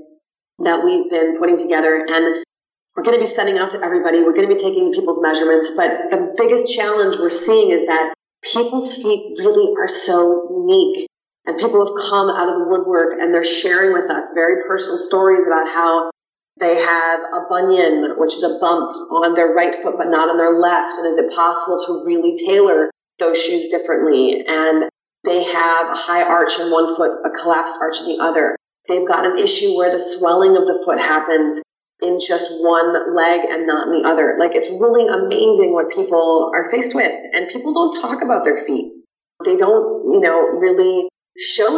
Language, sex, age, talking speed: English, female, 30-49, 195 wpm